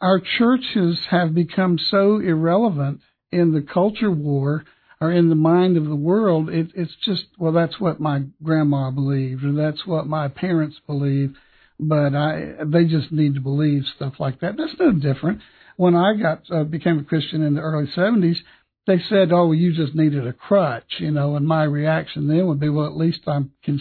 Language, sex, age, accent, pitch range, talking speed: English, male, 60-79, American, 150-180 Hz, 195 wpm